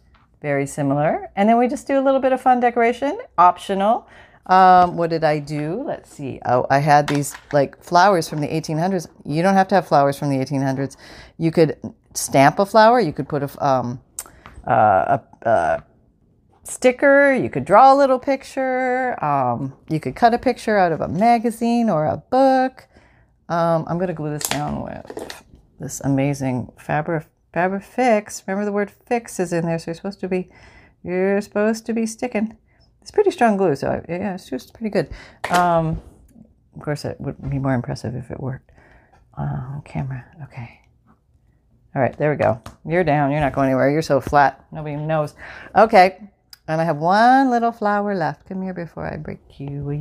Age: 40-59